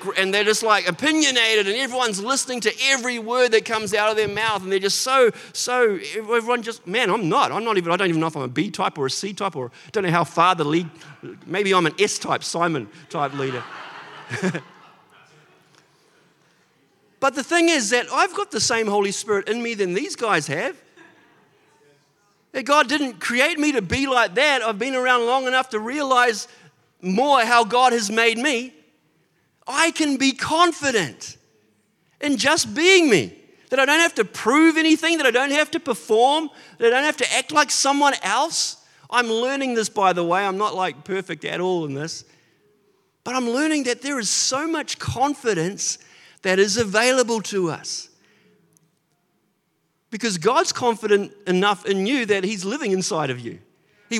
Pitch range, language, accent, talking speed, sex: 190-270 Hz, English, Australian, 185 wpm, male